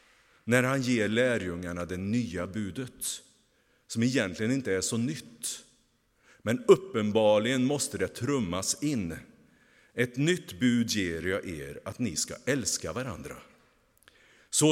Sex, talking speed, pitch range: male, 125 wpm, 95-130 Hz